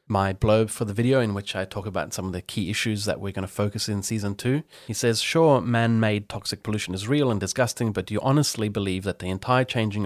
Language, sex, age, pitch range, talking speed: English, male, 30-49, 95-115 Hz, 250 wpm